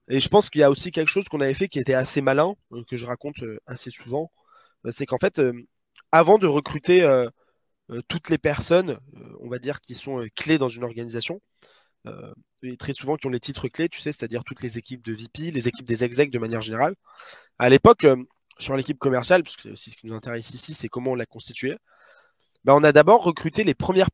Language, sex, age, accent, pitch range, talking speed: French, male, 20-39, French, 125-165 Hz, 220 wpm